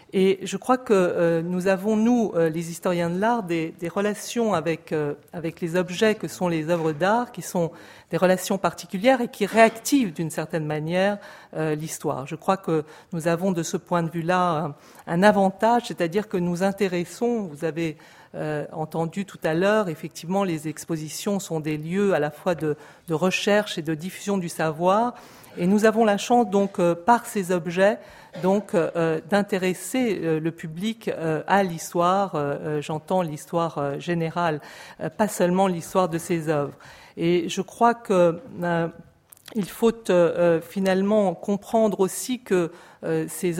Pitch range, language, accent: 165-200 Hz, French, French